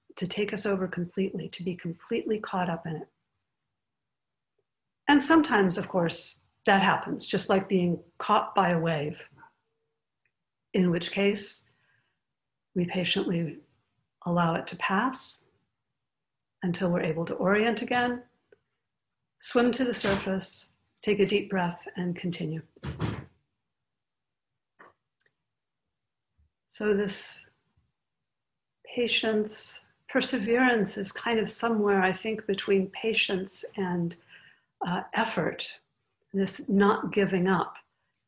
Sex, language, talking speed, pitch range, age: female, English, 110 wpm, 175-215 Hz, 50-69